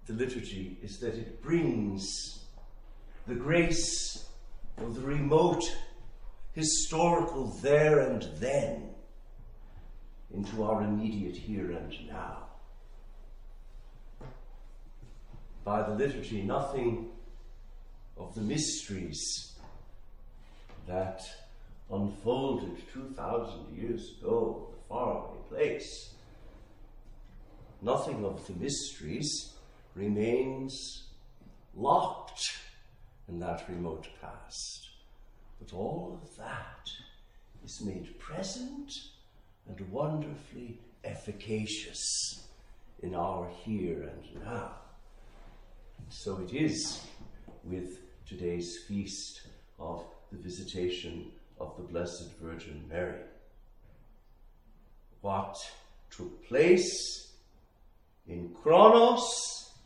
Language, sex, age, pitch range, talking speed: English, male, 60-79, 95-135 Hz, 80 wpm